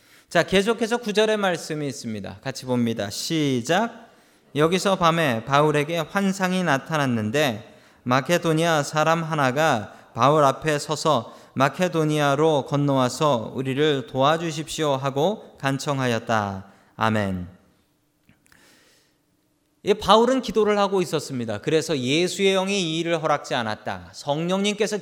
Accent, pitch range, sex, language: native, 130-190 Hz, male, Korean